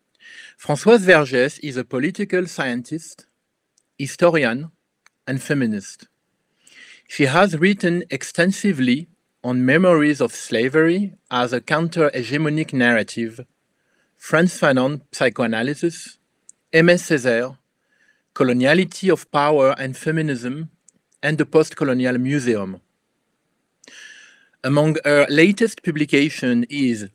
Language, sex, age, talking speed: English, male, 40-59, 90 wpm